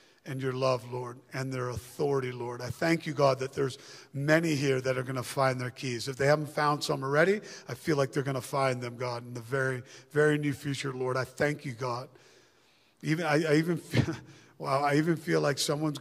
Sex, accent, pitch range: male, American, 130-145 Hz